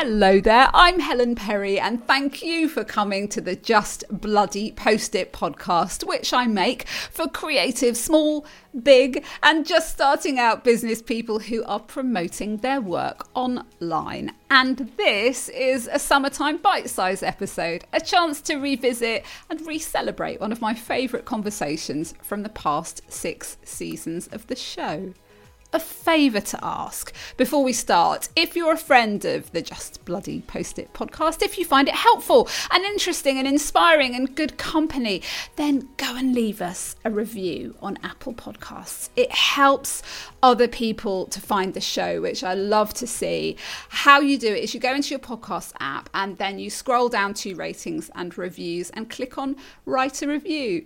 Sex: female